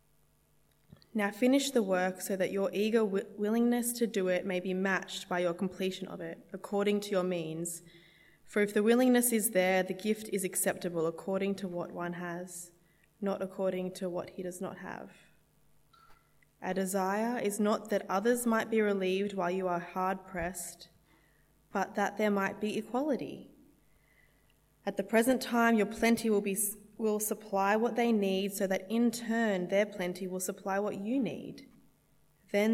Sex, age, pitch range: female, 20-39, 175-210 Hz